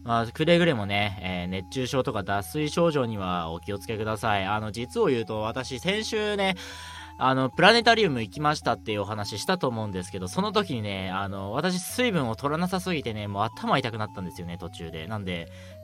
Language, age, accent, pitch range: Japanese, 20-39, native, 95-155 Hz